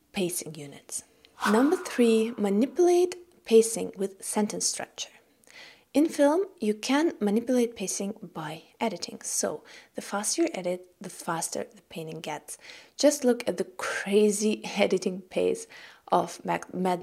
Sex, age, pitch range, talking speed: female, 20-39, 180-235 Hz, 125 wpm